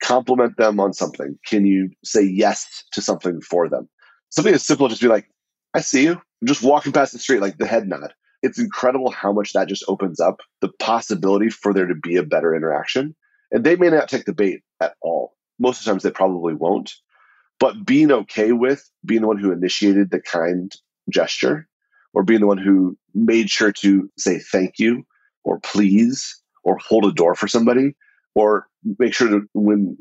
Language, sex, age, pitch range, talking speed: English, male, 30-49, 95-130 Hz, 200 wpm